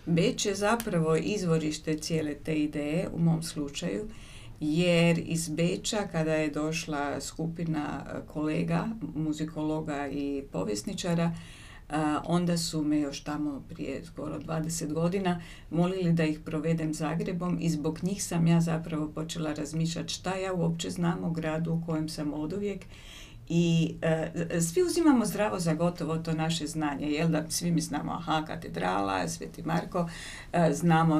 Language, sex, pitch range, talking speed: Croatian, female, 150-170 Hz, 140 wpm